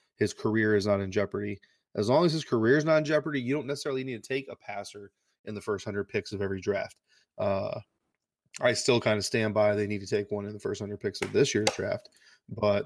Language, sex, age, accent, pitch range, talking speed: English, male, 20-39, American, 105-120 Hz, 245 wpm